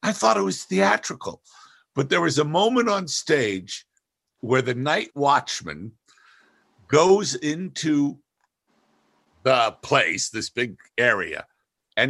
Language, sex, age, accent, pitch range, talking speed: English, male, 60-79, American, 130-205 Hz, 120 wpm